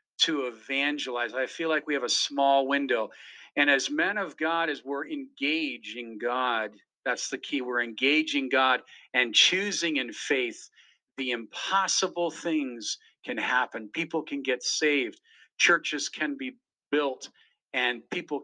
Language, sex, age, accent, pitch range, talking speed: English, male, 50-69, American, 135-195 Hz, 145 wpm